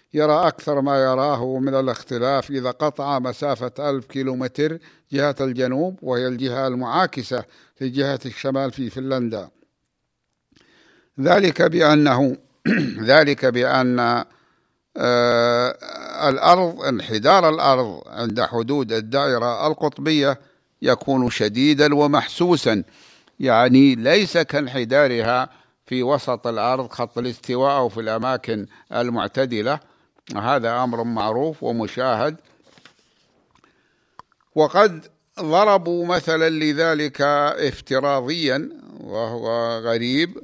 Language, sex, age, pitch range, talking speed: Arabic, male, 60-79, 120-145 Hz, 90 wpm